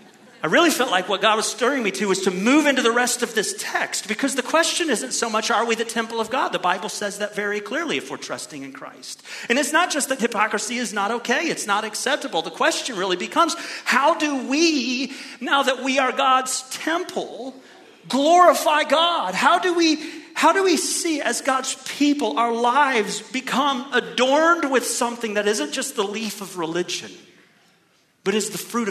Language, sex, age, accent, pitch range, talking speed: English, male, 40-59, American, 215-285 Hz, 200 wpm